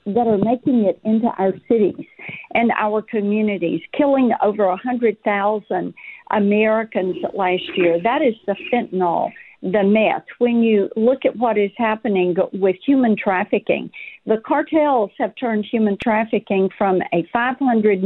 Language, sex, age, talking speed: English, female, 50-69, 145 wpm